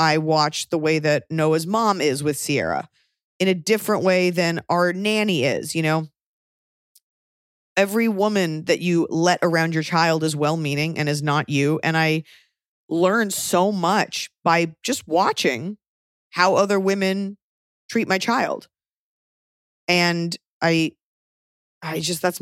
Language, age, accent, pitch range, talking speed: English, 20-39, American, 160-195 Hz, 140 wpm